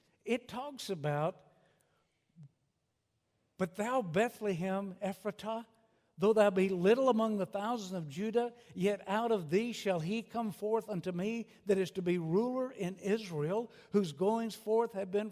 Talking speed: 150 wpm